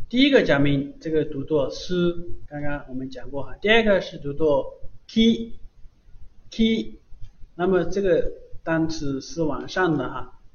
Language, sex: Chinese, male